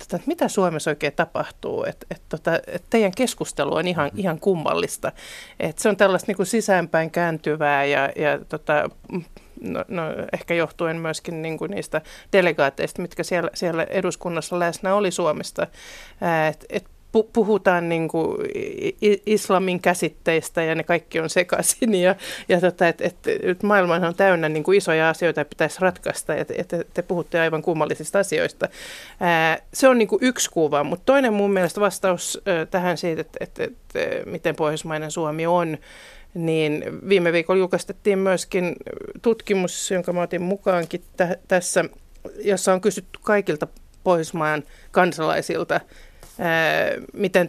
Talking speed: 140 wpm